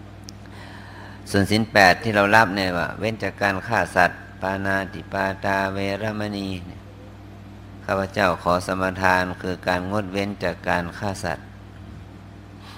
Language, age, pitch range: Thai, 60-79, 90-100 Hz